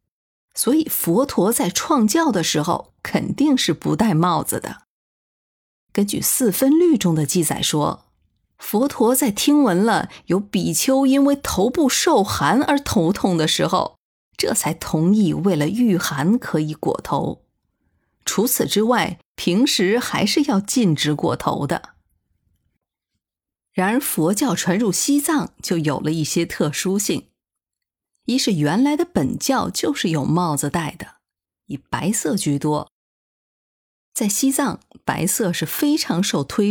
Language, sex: Chinese, female